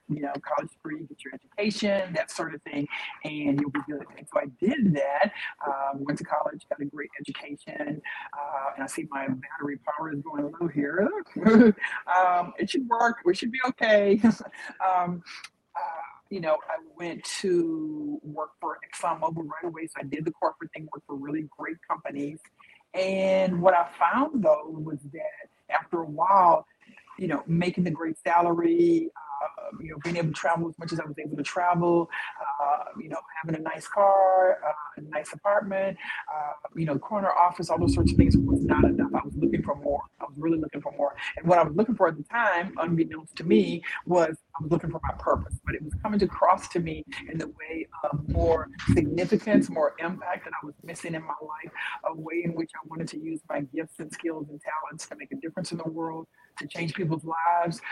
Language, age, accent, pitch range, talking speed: English, 50-69, American, 155-185 Hz, 210 wpm